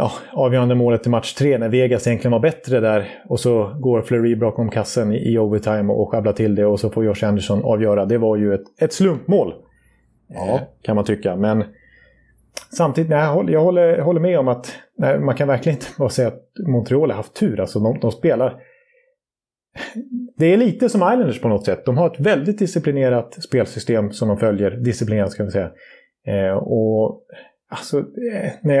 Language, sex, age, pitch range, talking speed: Swedish, male, 30-49, 110-170 Hz, 190 wpm